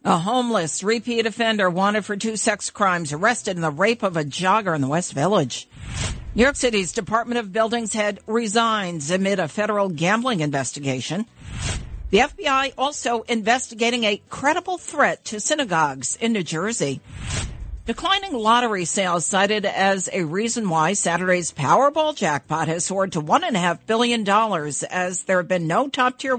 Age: 50-69